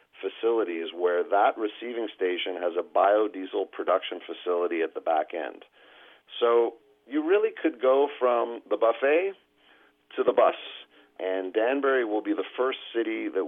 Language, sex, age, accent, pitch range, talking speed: English, male, 50-69, American, 95-145 Hz, 145 wpm